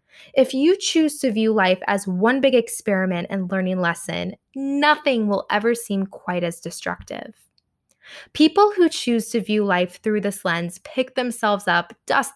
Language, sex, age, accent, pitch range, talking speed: English, female, 10-29, American, 190-245 Hz, 160 wpm